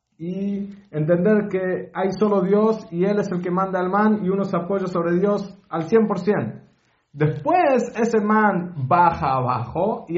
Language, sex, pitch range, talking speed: English, male, 145-210 Hz, 165 wpm